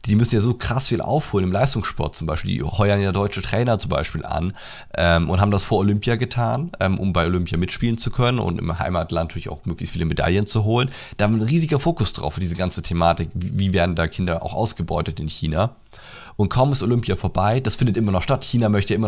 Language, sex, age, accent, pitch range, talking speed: German, male, 30-49, German, 90-110 Hz, 240 wpm